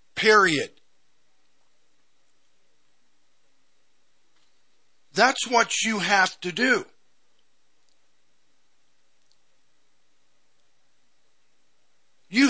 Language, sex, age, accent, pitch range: English, male, 50-69, American, 155-225 Hz